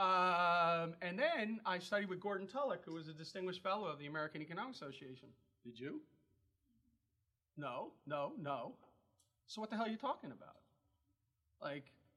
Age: 40-59